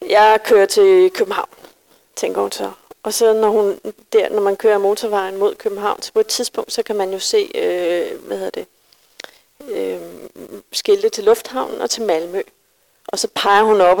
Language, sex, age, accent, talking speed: Danish, female, 40-59, native, 180 wpm